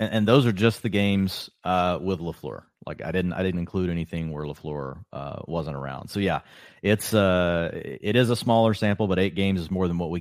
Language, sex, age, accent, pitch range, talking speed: English, male, 30-49, American, 80-100 Hz, 225 wpm